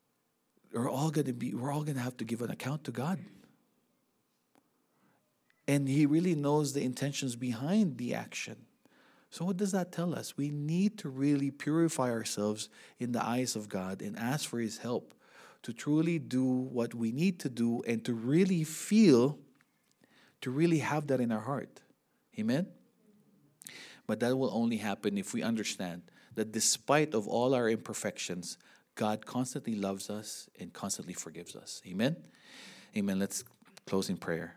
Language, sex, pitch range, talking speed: English, male, 105-140 Hz, 155 wpm